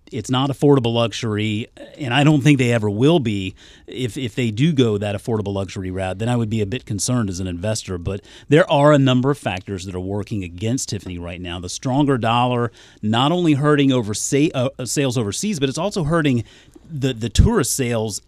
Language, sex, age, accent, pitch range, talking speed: English, male, 30-49, American, 100-135 Hz, 205 wpm